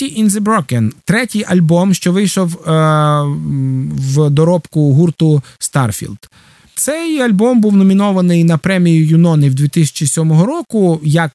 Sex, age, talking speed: male, 20-39, 120 wpm